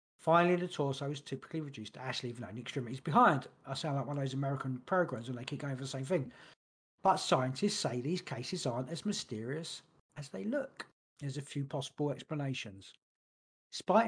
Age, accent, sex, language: 40-59, British, male, English